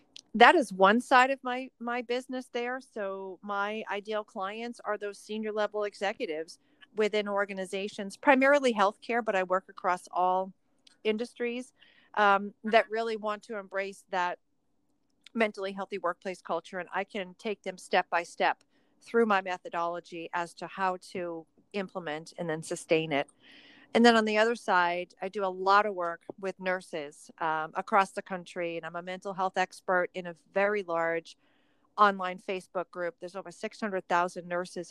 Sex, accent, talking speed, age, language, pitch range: female, American, 160 wpm, 40-59, English, 175-215 Hz